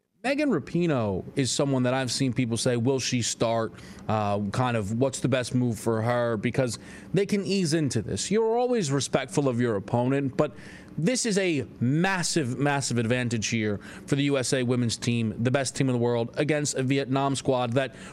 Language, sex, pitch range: English, male, 130-190 Hz